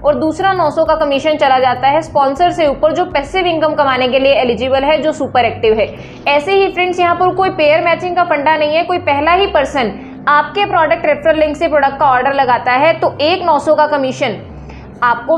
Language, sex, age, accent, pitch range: Hindi, female, 20-39, native, 285-335 Hz